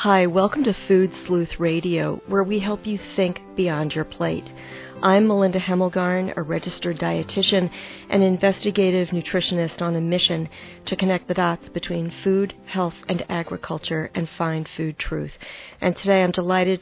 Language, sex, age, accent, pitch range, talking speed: English, female, 40-59, American, 170-200 Hz, 155 wpm